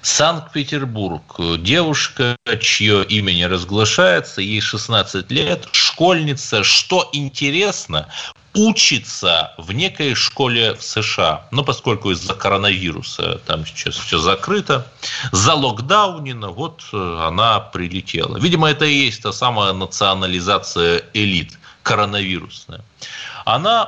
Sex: male